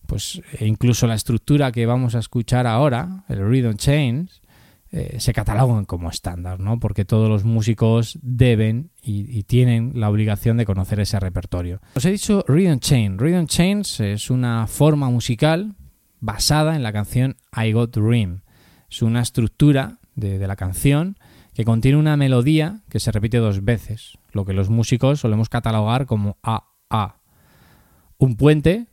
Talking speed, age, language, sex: 165 wpm, 20-39, Spanish, male